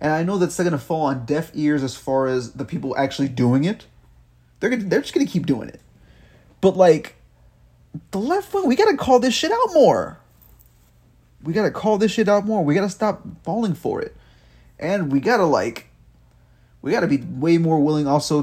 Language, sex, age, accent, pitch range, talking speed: English, male, 30-49, American, 125-185 Hz, 200 wpm